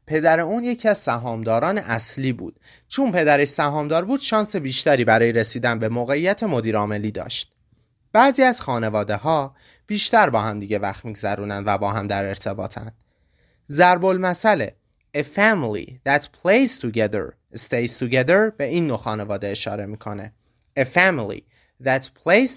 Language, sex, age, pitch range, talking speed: Persian, male, 30-49, 110-170 Hz, 140 wpm